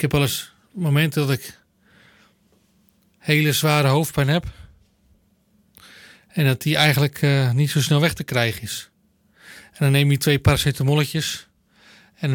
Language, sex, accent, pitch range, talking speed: Dutch, male, Dutch, 135-165 Hz, 145 wpm